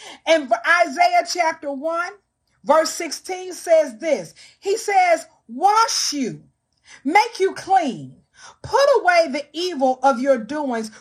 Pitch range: 270-380 Hz